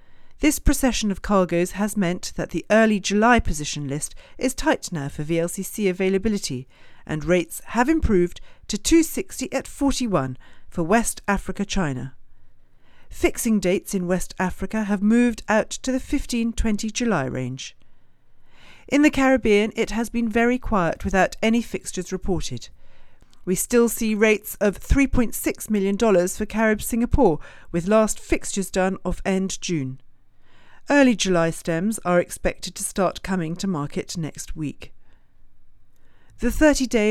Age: 40-59